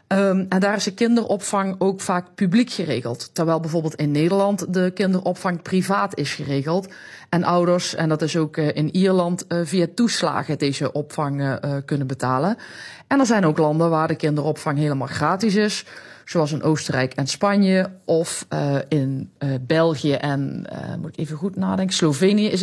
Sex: female